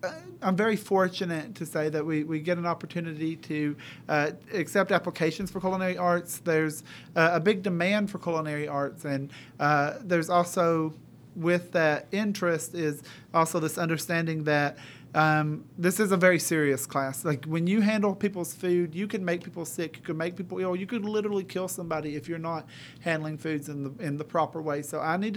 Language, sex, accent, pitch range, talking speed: English, male, American, 155-185 Hz, 190 wpm